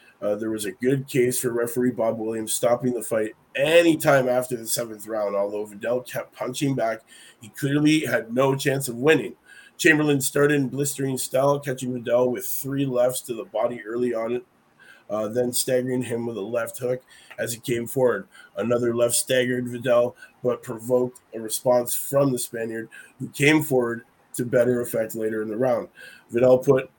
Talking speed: 180 wpm